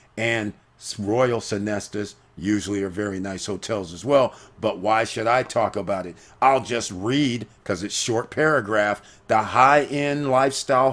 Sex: male